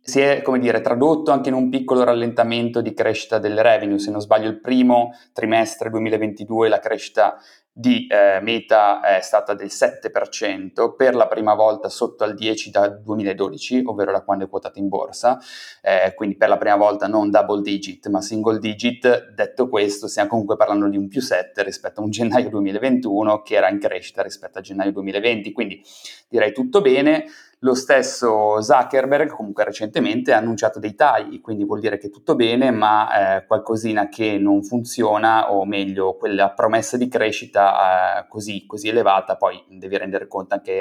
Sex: male